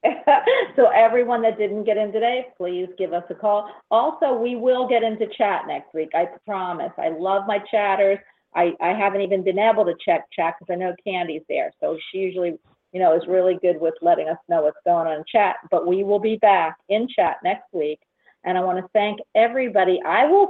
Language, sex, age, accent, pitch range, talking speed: English, female, 50-69, American, 185-245 Hz, 215 wpm